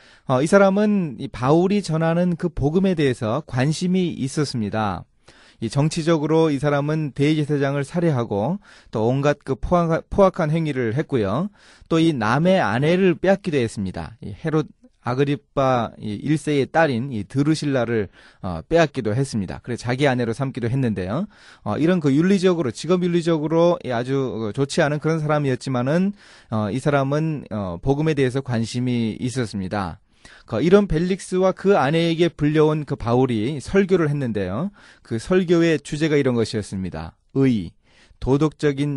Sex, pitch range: male, 115-165 Hz